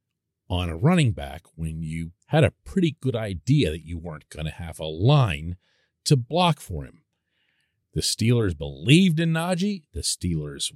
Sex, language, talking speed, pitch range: male, English, 165 wpm, 100-165 Hz